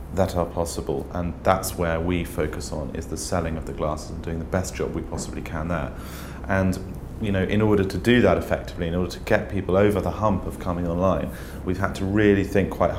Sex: male